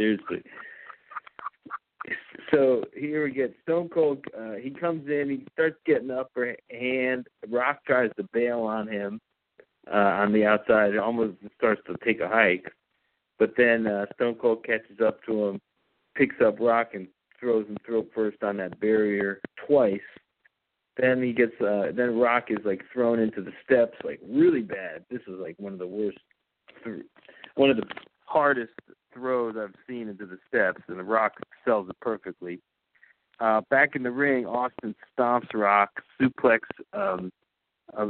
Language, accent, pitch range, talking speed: English, American, 105-125 Hz, 160 wpm